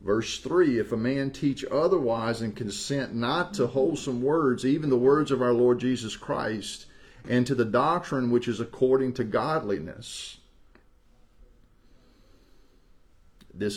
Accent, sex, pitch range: American, male, 95-120 Hz